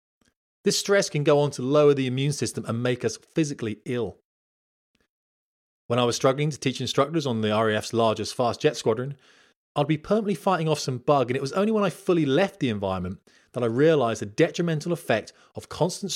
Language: English